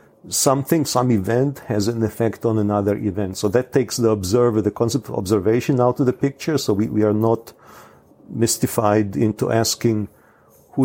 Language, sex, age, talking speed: English, male, 50-69, 170 wpm